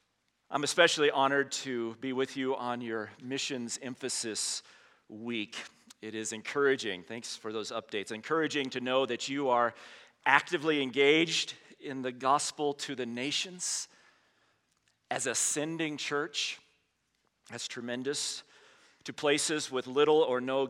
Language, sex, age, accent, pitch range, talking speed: English, male, 40-59, American, 120-145 Hz, 130 wpm